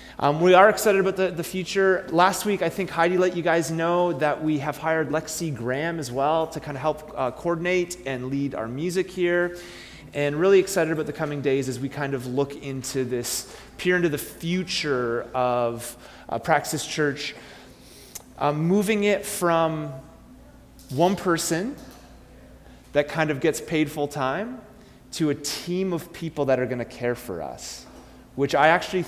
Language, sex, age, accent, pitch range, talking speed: English, male, 30-49, American, 130-170 Hz, 175 wpm